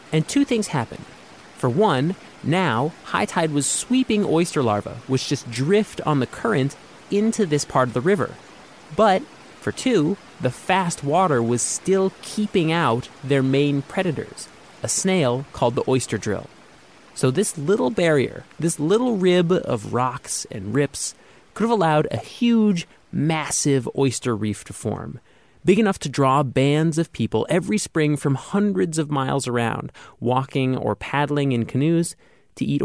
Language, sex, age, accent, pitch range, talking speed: English, male, 30-49, American, 130-180 Hz, 155 wpm